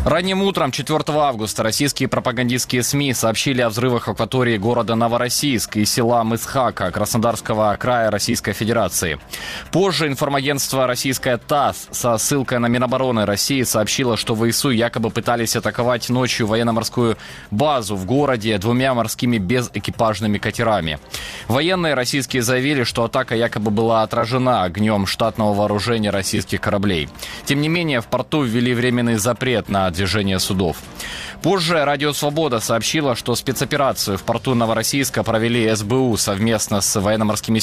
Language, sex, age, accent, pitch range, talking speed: Ukrainian, male, 20-39, native, 110-135 Hz, 130 wpm